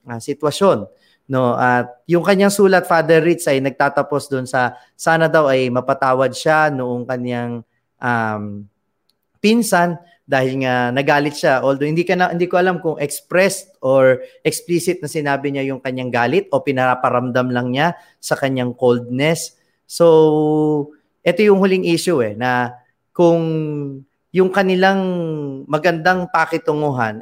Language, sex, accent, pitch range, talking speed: Filipino, male, native, 125-165 Hz, 140 wpm